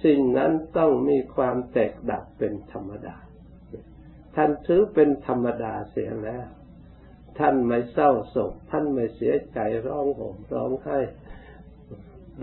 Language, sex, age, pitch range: Thai, male, 60-79, 105-145 Hz